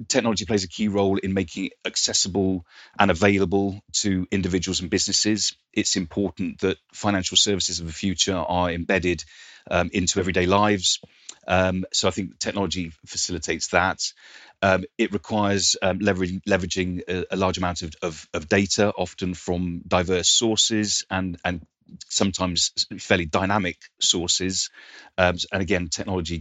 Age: 30-49